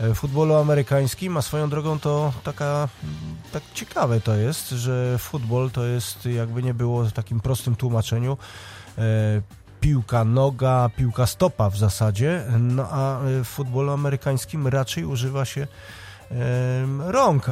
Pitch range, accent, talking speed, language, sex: 120-140 Hz, native, 135 wpm, Polish, male